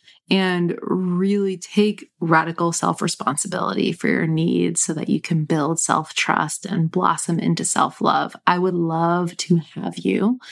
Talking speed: 135 wpm